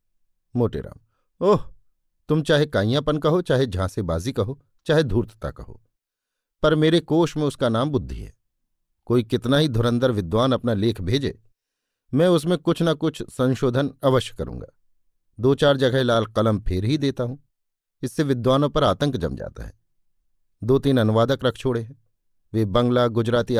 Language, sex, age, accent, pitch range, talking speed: Hindi, male, 50-69, native, 105-140 Hz, 165 wpm